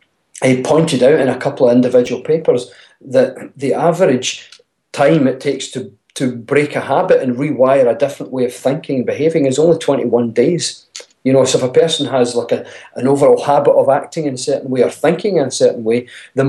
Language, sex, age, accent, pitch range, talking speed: English, male, 40-59, British, 130-175 Hz, 210 wpm